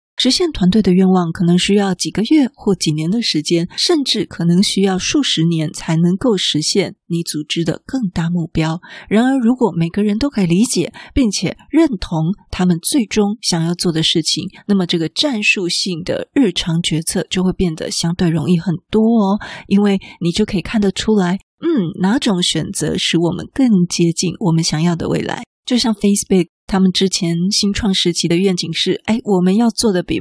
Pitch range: 170-220 Hz